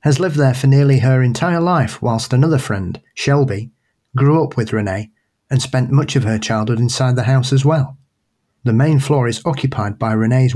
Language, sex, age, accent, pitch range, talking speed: English, male, 30-49, British, 110-140 Hz, 195 wpm